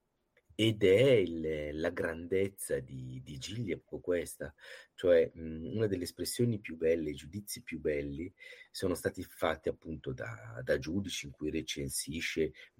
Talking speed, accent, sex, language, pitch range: 140 wpm, native, male, Italian, 80-125 Hz